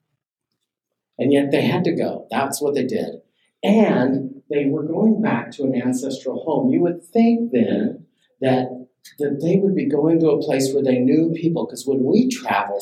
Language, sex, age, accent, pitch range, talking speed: English, male, 50-69, American, 110-170 Hz, 185 wpm